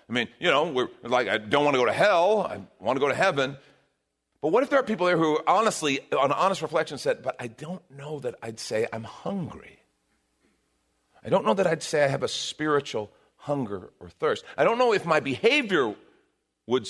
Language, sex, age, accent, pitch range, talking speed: English, male, 40-59, American, 100-155 Hz, 215 wpm